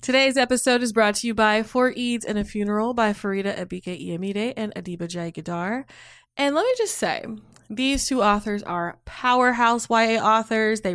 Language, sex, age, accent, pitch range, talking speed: English, female, 20-39, American, 185-245 Hz, 180 wpm